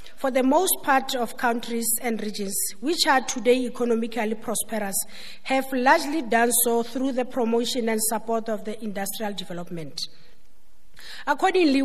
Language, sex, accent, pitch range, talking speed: English, female, South African, 220-270 Hz, 135 wpm